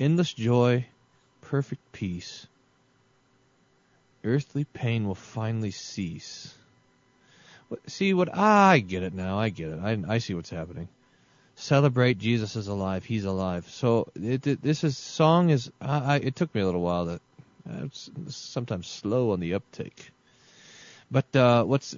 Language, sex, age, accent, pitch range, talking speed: English, male, 30-49, American, 105-135 Hz, 145 wpm